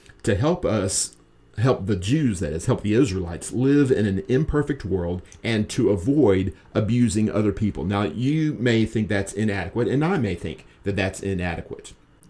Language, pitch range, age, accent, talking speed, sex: English, 100-125 Hz, 40-59, American, 170 wpm, male